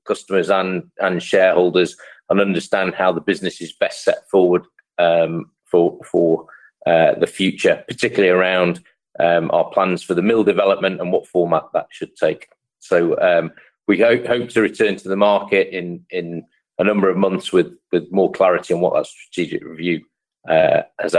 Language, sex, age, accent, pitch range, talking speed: English, male, 40-59, British, 90-115 Hz, 175 wpm